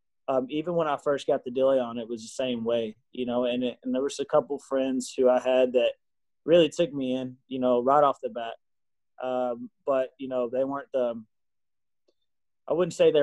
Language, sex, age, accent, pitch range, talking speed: English, male, 20-39, American, 125-145 Hz, 230 wpm